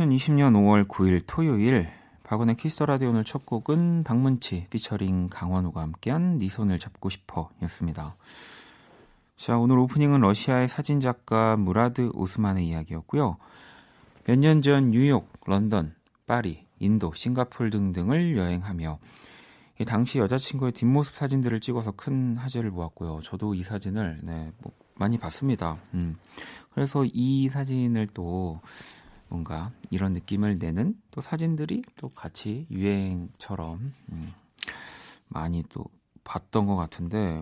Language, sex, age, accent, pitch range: Korean, male, 40-59, native, 90-130 Hz